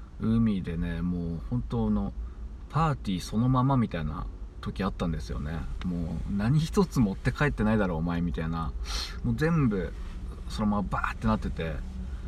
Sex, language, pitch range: male, Japanese, 75-105 Hz